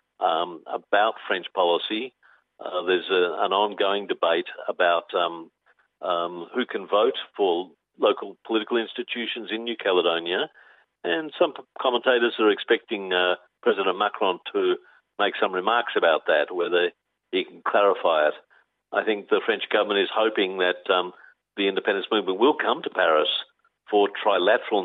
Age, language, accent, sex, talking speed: 50-69, English, Australian, male, 140 wpm